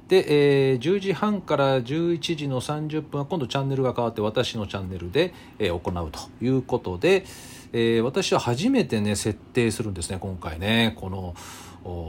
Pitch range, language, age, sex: 90-145 Hz, Japanese, 40-59, male